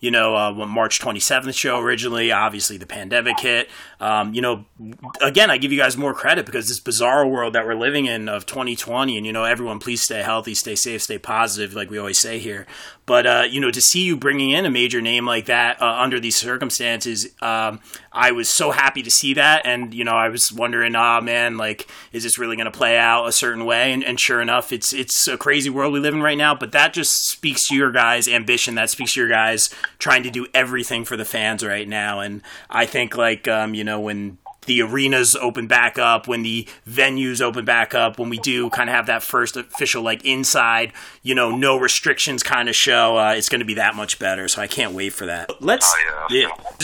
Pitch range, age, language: 110-130 Hz, 30-49, English